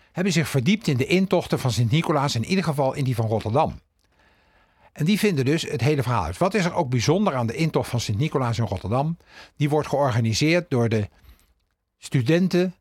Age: 50-69